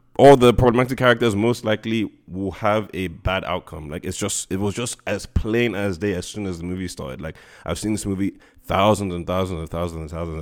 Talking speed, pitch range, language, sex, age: 225 wpm, 85-105 Hz, English, male, 20-39